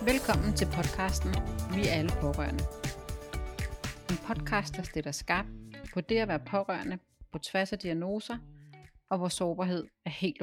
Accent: native